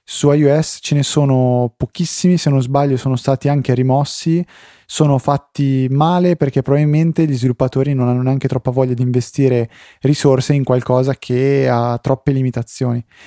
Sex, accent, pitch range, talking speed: male, native, 115-135 Hz, 155 wpm